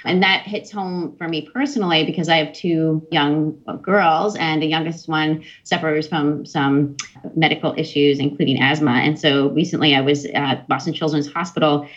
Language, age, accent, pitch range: English, 30-49, American, 145-165 Hz